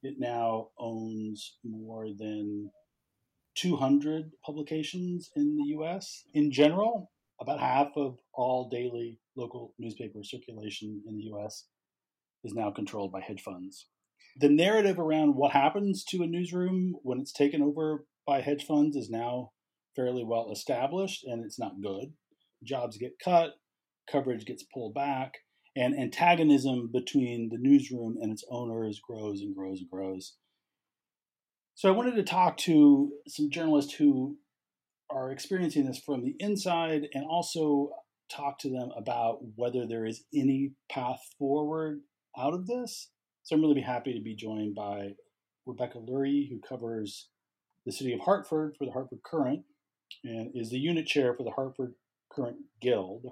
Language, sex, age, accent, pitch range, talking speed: English, male, 40-59, American, 115-155 Hz, 150 wpm